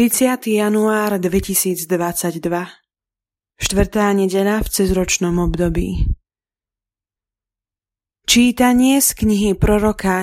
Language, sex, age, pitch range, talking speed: Slovak, female, 20-39, 175-210 Hz, 70 wpm